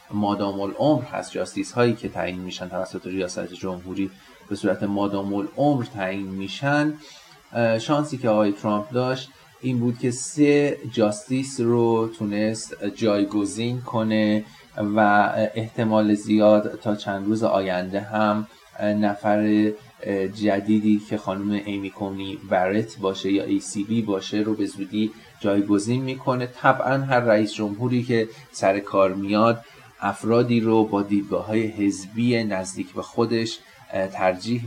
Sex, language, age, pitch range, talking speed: male, Persian, 30-49, 100-120 Hz, 130 wpm